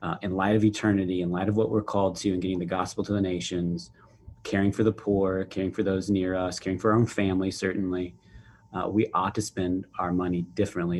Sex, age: male, 30-49